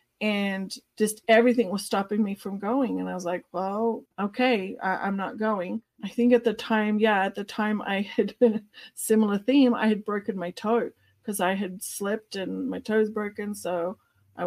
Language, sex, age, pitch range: English, female, 40-59, 195-235 Hz